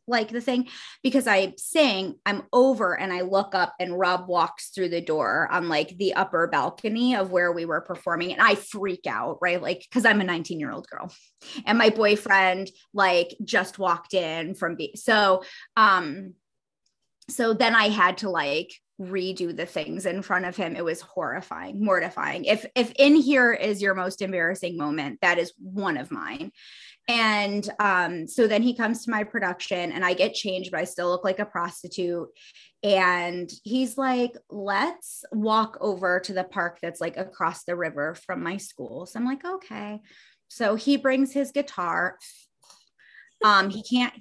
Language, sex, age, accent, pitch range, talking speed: English, female, 20-39, American, 180-225 Hz, 180 wpm